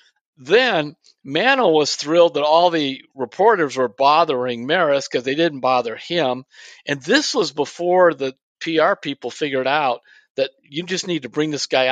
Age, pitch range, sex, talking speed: 50-69, 125-165 Hz, male, 165 wpm